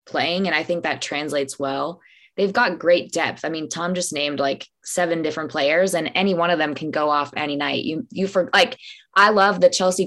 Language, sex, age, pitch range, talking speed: English, female, 20-39, 150-185 Hz, 225 wpm